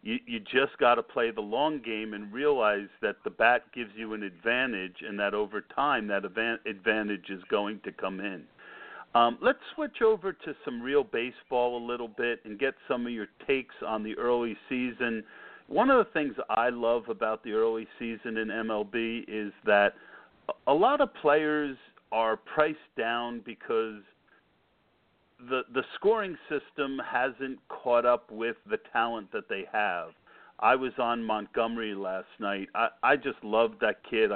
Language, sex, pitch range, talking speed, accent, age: English, male, 110-170 Hz, 170 wpm, American, 50-69